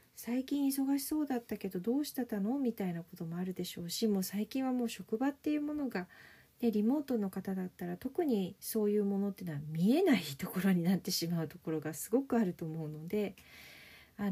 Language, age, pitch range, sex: Japanese, 40-59, 180-265 Hz, female